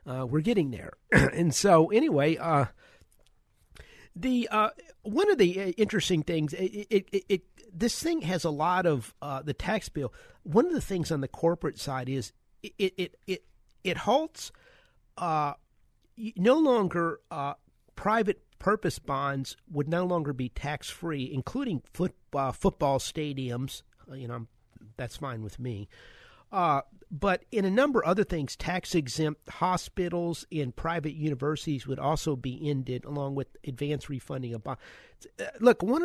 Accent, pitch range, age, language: American, 135-185 Hz, 50-69, English